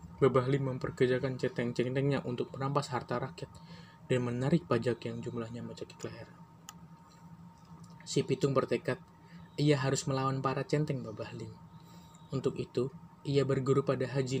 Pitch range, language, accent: 120-140 Hz, Indonesian, native